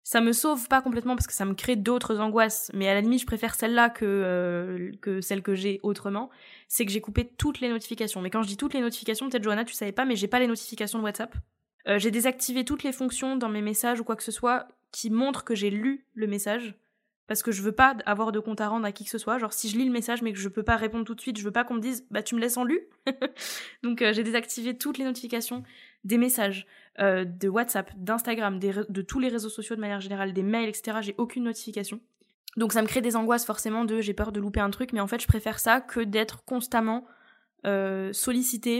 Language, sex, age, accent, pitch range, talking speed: French, female, 20-39, French, 210-245 Hz, 260 wpm